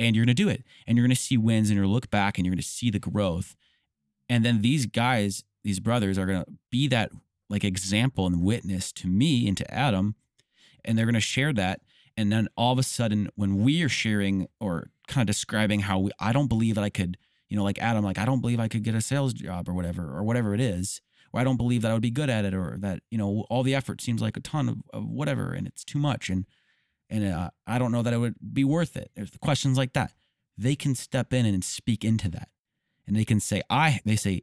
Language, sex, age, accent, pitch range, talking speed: English, male, 30-49, American, 95-120 Hz, 265 wpm